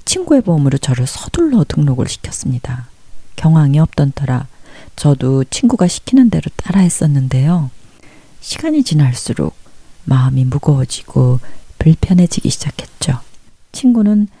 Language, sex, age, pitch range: Korean, female, 40-59, 135-180 Hz